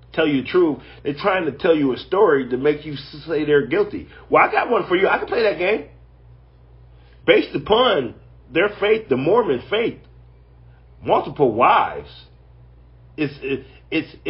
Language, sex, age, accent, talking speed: English, male, 40-59, American, 170 wpm